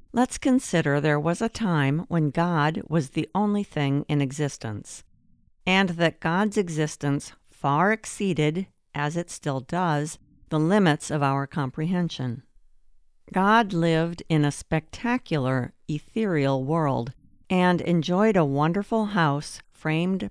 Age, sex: 50-69, female